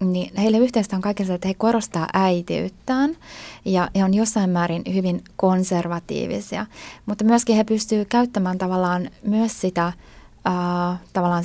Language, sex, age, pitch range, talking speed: Finnish, female, 20-39, 175-210 Hz, 135 wpm